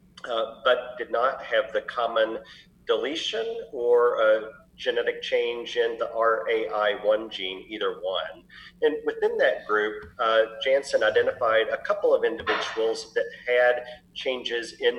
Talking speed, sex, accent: 130 wpm, male, American